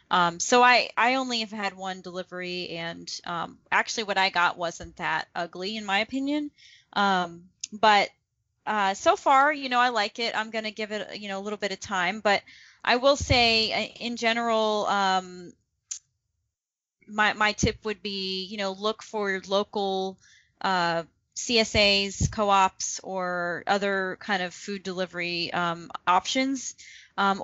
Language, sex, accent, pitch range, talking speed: English, female, American, 185-230 Hz, 155 wpm